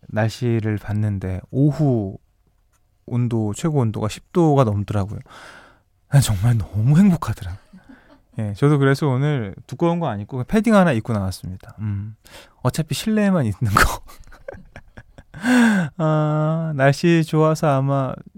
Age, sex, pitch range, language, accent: 20-39, male, 110-160 Hz, Korean, native